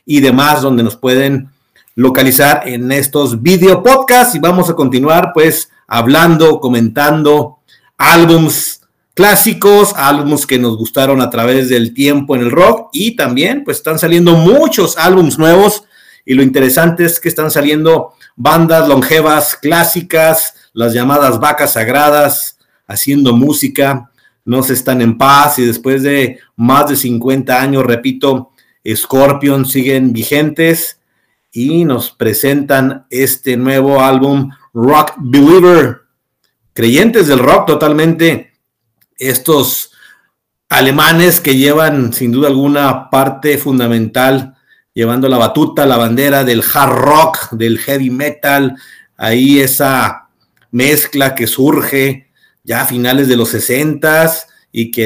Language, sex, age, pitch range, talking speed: Spanish, male, 50-69, 130-150 Hz, 125 wpm